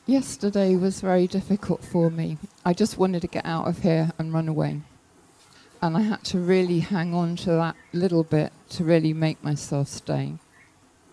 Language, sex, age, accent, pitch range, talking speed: English, female, 50-69, British, 160-190 Hz, 180 wpm